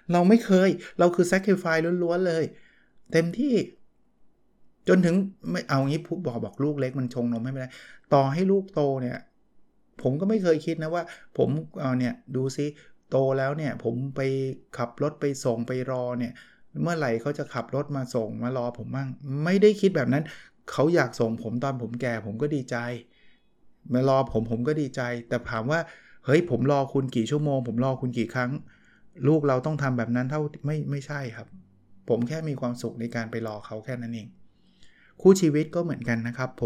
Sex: male